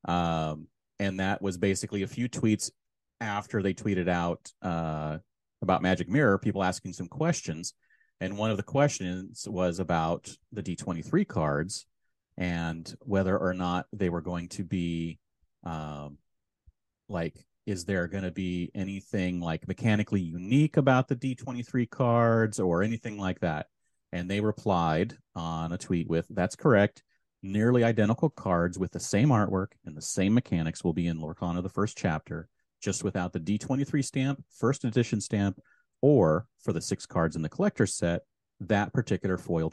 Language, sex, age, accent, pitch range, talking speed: English, male, 30-49, American, 90-115 Hz, 160 wpm